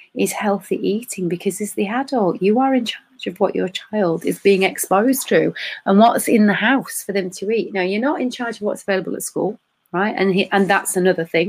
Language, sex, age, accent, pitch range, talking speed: English, female, 30-49, British, 175-225 Hz, 230 wpm